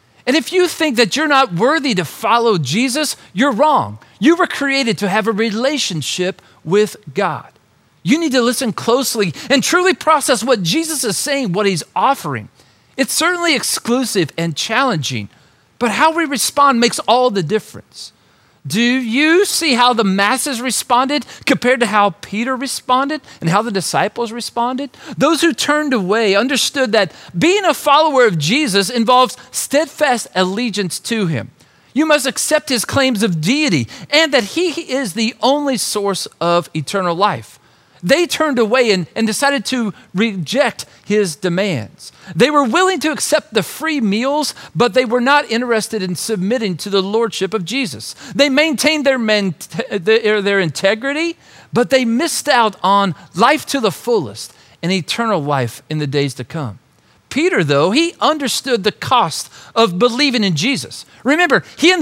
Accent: American